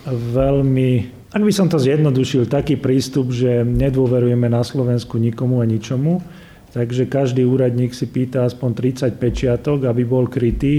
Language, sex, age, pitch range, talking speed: Slovak, male, 40-59, 120-135 Hz, 145 wpm